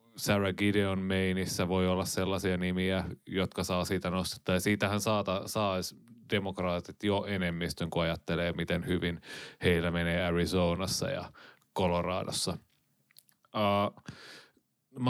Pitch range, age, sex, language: 90-110 Hz, 30-49, male, Finnish